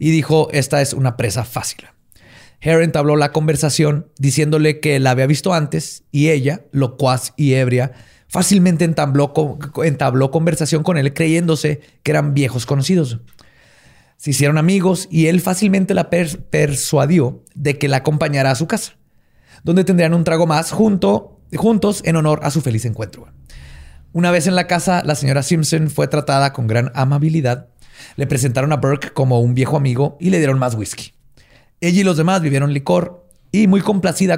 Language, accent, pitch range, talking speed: Spanish, Mexican, 135-170 Hz, 165 wpm